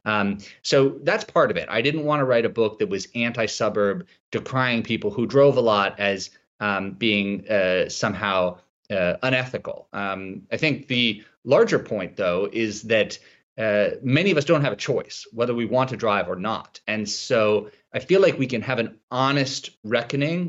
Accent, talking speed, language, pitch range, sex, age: American, 185 wpm, English, 115-150 Hz, male, 30-49